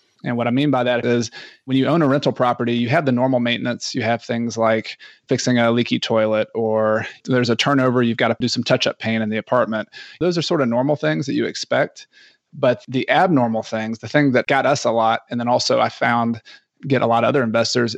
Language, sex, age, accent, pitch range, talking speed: English, male, 30-49, American, 115-135 Hz, 235 wpm